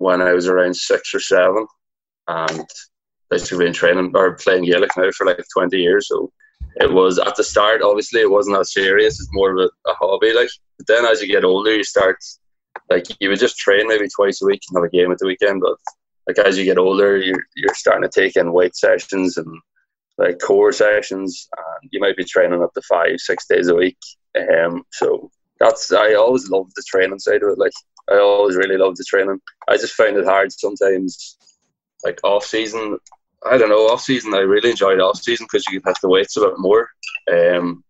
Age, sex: 20-39, male